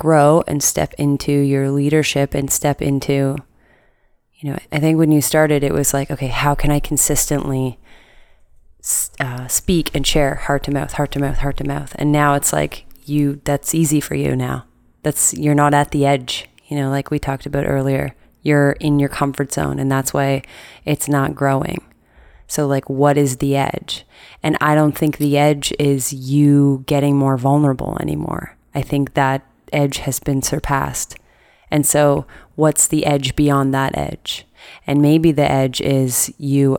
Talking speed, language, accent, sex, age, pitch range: 180 wpm, English, American, female, 20-39, 135-145 Hz